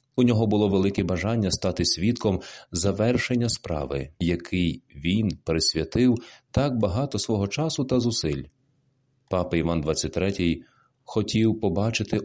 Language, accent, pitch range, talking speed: Ukrainian, native, 85-120 Hz, 115 wpm